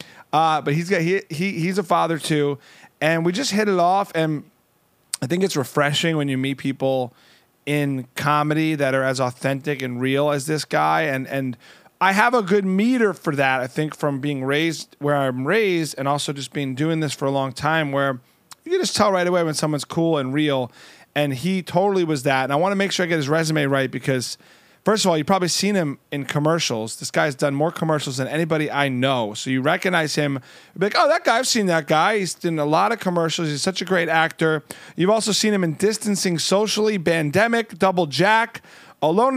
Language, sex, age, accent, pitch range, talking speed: English, male, 30-49, American, 140-195 Hz, 220 wpm